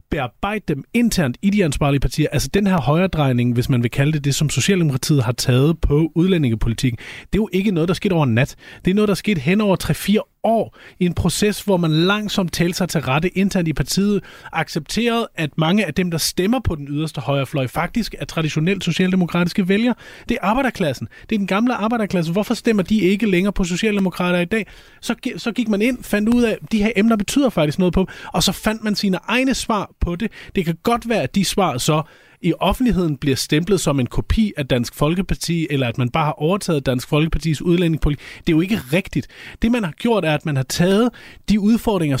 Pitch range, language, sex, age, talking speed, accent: 150-205 Hz, Danish, male, 30-49, 225 wpm, native